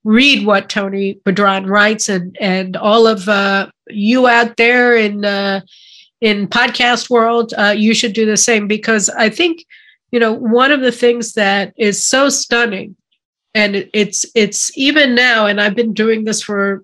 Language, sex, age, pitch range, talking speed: English, female, 50-69, 205-240 Hz, 170 wpm